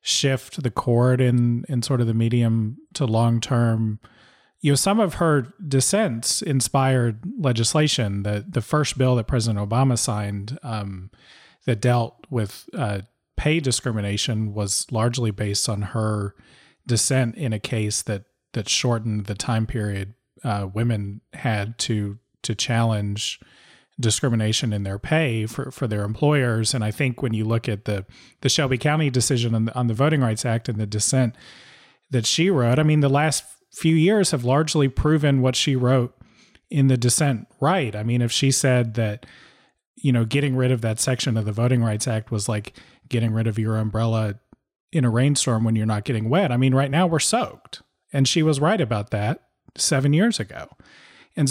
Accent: American